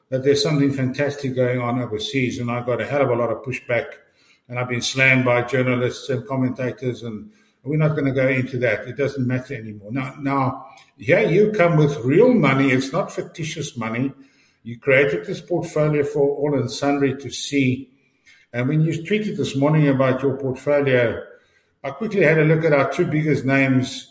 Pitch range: 130-160 Hz